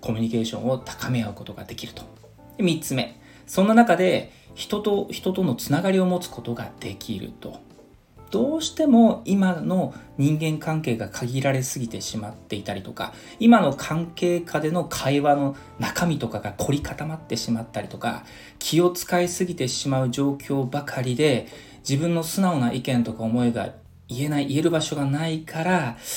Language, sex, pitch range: Japanese, male, 115-165 Hz